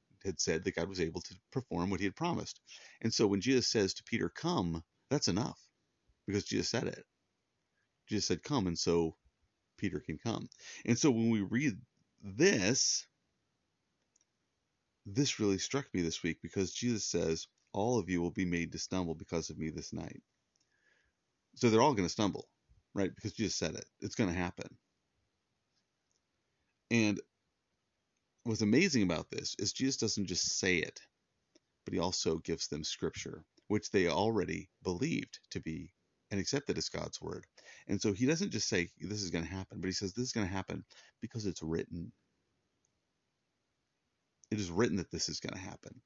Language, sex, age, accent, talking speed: English, male, 30-49, American, 175 wpm